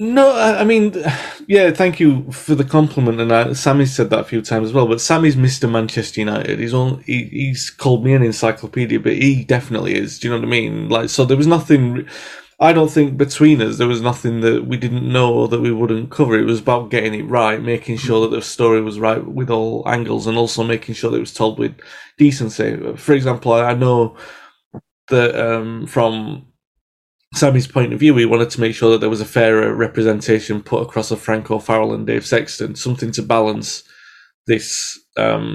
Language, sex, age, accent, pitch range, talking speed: English, male, 30-49, British, 110-135 Hz, 210 wpm